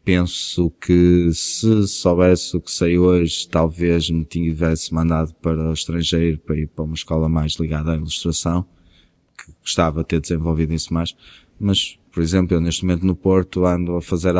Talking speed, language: 175 wpm, Portuguese